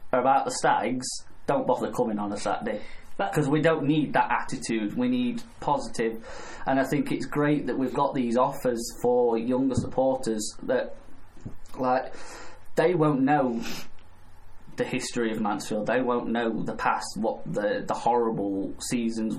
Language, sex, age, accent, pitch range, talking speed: English, male, 20-39, British, 110-135 Hz, 155 wpm